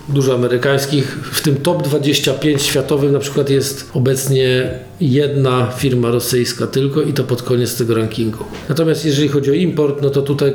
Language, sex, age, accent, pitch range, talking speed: Polish, male, 40-59, native, 120-140 Hz, 165 wpm